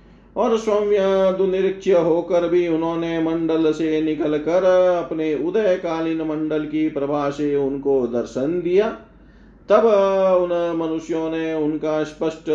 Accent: native